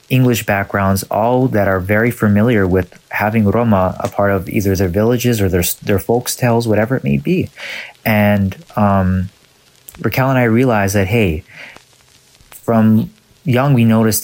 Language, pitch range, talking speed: English, 95-115 Hz, 150 wpm